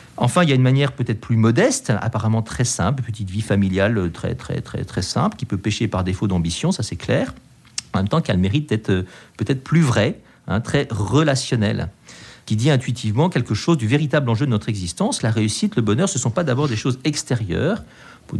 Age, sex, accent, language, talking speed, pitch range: 50-69, male, French, French, 210 wpm, 110-155 Hz